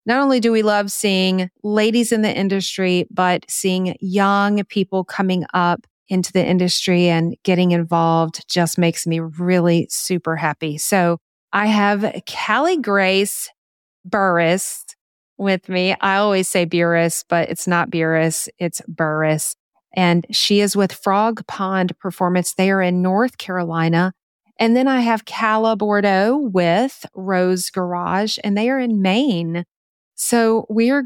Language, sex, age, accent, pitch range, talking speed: English, female, 30-49, American, 175-210 Hz, 145 wpm